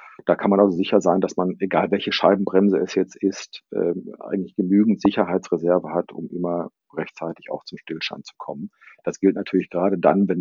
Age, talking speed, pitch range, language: 50-69, 185 wpm, 90-110 Hz, German